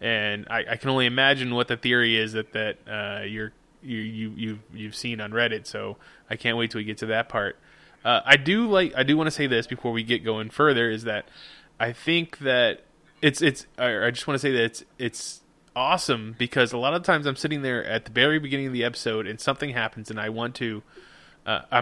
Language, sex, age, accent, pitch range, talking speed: English, male, 20-39, American, 115-140 Hz, 235 wpm